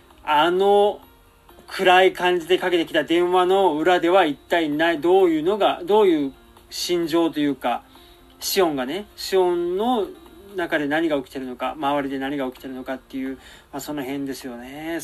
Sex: male